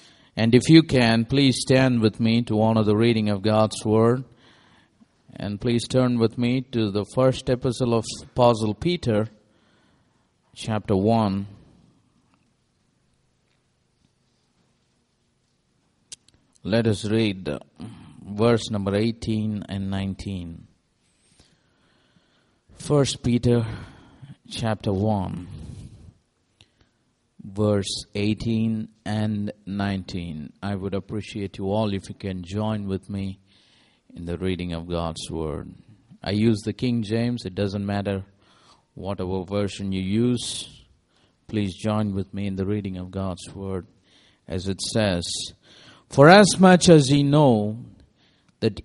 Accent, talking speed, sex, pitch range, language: Indian, 115 wpm, male, 100-120 Hz, English